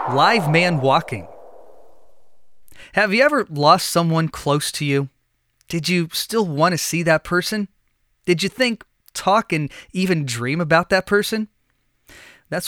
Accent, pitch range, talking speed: American, 135-175 Hz, 140 wpm